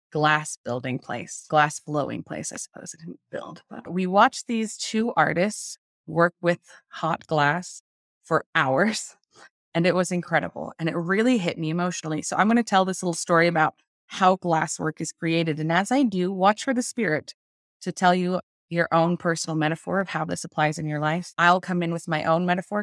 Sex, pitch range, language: female, 155-185 Hz, English